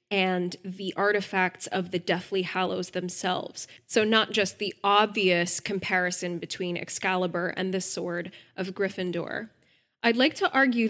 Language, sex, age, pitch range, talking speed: English, female, 10-29, 185-220 Hz, 140 wpm